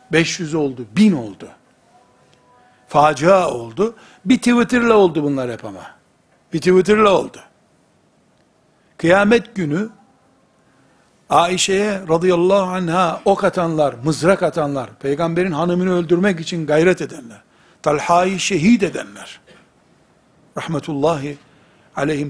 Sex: male